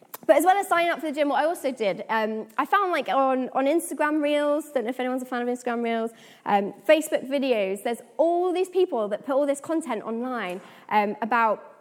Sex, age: female, 20-39